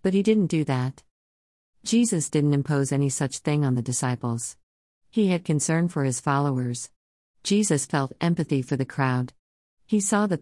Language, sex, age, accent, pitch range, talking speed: English, female, 50-69, American, 130-165 Hz, 165 wpm